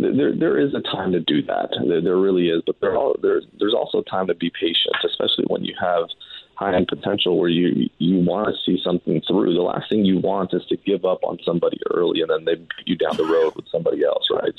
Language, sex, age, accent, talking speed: English, male, 30-49, American, 250 wpm